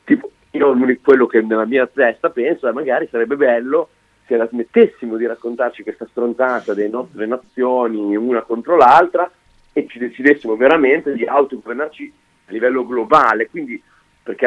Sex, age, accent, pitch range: male, 40-59, native, 115-155 Hz